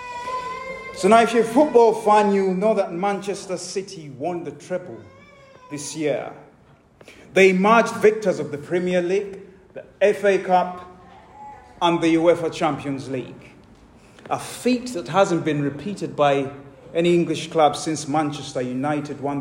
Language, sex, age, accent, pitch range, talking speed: English, male, 30-49, British, 150-210 Hz, 140 wpm